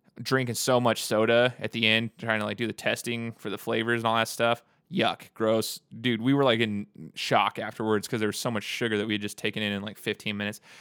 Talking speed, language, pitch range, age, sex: 250 wpm, English, 110-130 Hz, 20-39, male